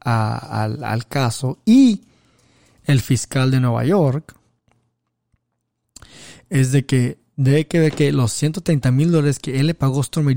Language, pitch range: Spanish, 120-145 Hz